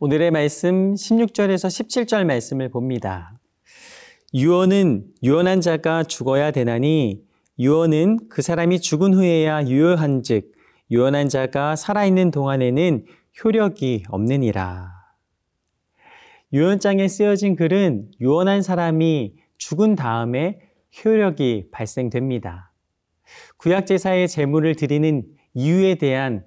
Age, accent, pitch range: 40-59, native, 130-185 Hz